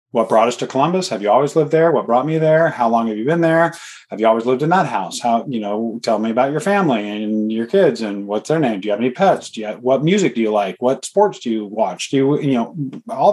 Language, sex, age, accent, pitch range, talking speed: English, male, 30-49, American, 120-150 Hz, 295 wpm